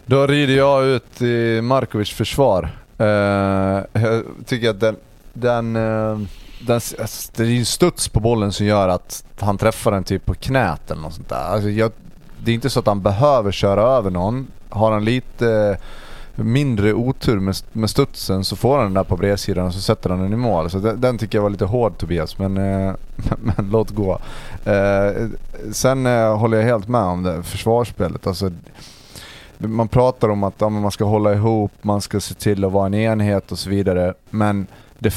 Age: 30-49